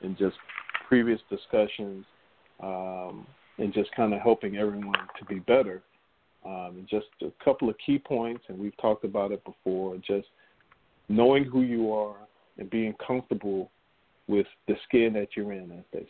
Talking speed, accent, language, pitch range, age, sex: 160 wpm, American, English, 100-120 Hz, 50-69, male